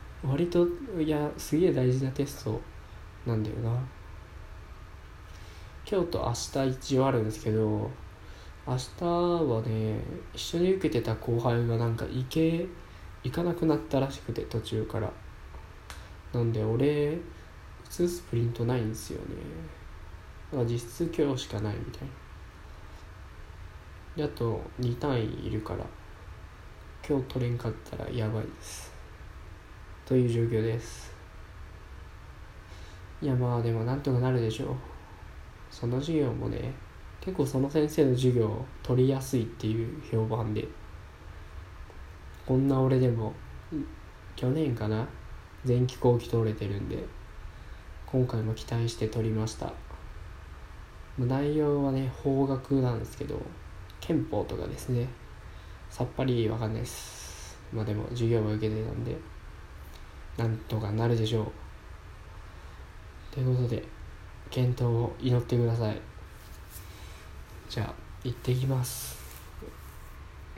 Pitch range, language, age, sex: 90-125 Hz, Japanese, 20-39, male